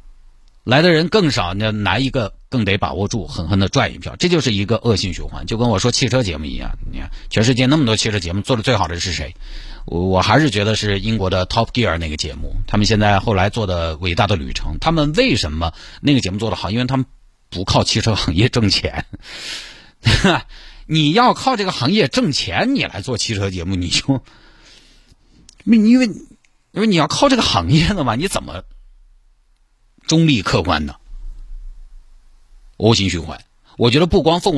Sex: male